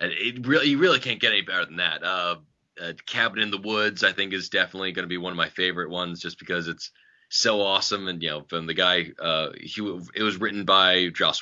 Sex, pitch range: male, 90-105 Hz